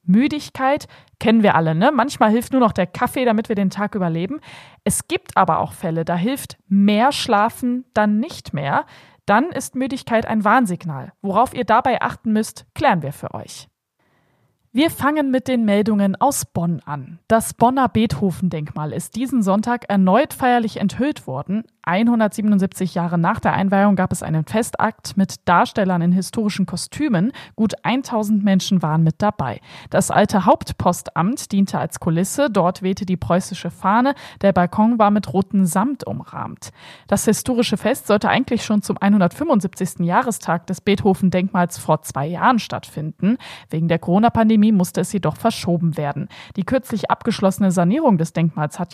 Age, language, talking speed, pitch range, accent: 20-39, German, 155 wpm, 175-230 Hz, German